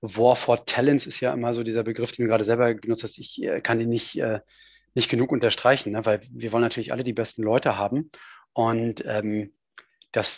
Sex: male